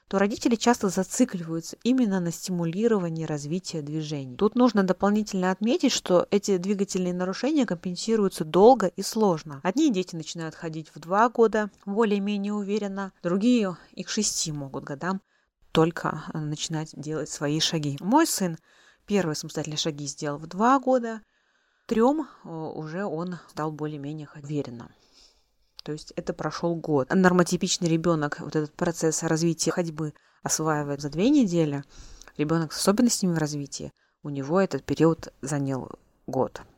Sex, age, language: female, 20-39, Russian